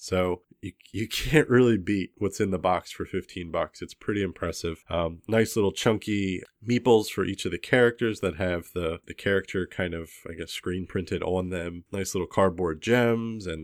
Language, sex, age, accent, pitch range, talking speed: English, male, 30-49, American, 85-105 Hz, 195 wpm